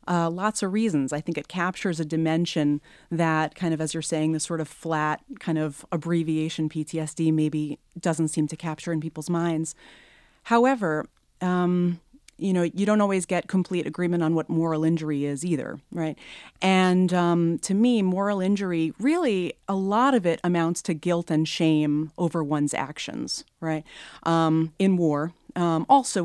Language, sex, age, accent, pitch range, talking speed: English, female, 30-49, American, 155-180 Hz, 170 wpm